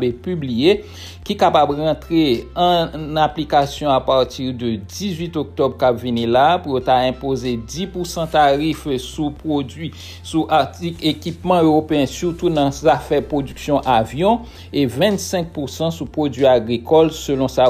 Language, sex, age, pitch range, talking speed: English, male, 60-79, 125-160 Hz, 130 wpm